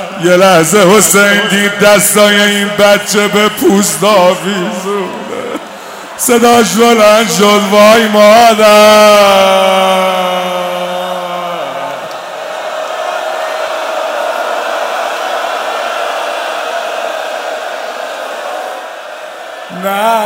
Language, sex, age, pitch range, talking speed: Persian, male, 50-69, 195-215 Hz, 50 wpm